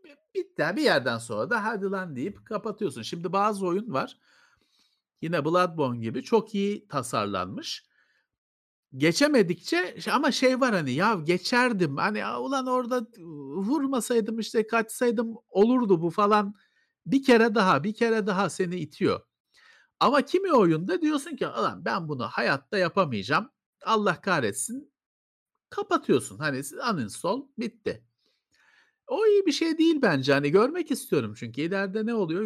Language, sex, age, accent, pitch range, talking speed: Turkish, male, 50-69, native, 175-245 Hz, 135 wpm